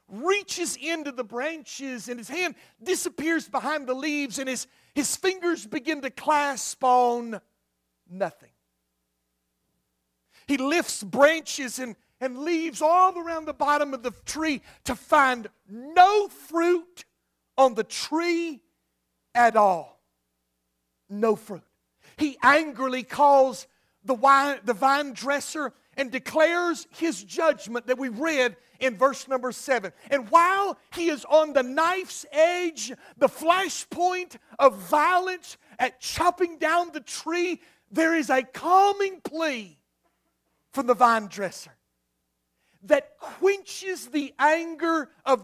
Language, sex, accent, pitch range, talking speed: English, male, American, 225-320 Hz, 125 wpm